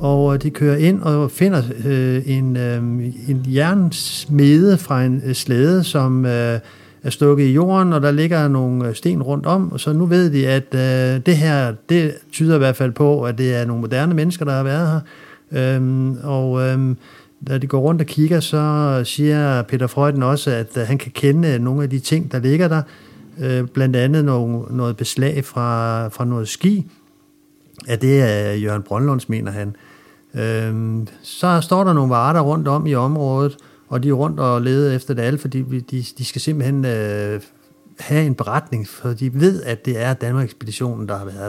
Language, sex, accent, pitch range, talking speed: Danish, male, native, 125-150 Hz, 190 wpm